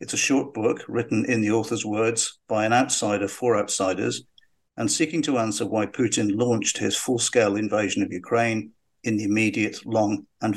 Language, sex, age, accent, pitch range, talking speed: English, male, 50-69, British, 105-125 Hz, 175 wpm